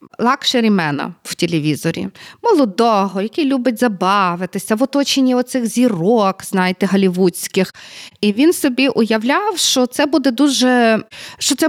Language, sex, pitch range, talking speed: Ukrainian, female, 185-240 Hz, 115 wpm